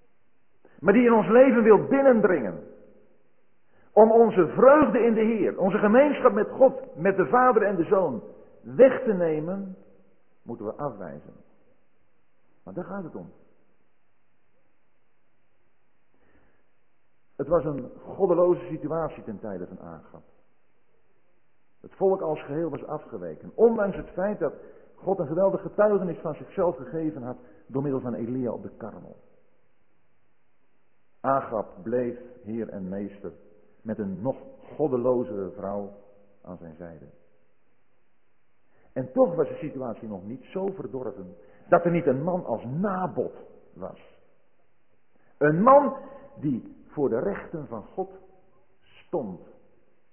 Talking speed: 130 wpm